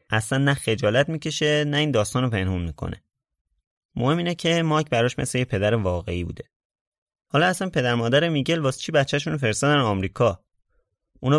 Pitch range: 100-140 Hz